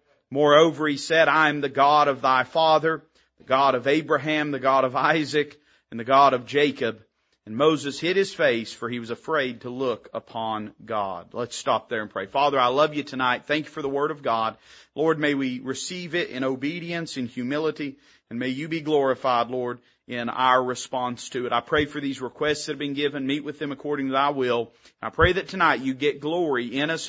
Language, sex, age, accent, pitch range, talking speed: English, male, 40-59, American, 135-175 Hz, 215 wpm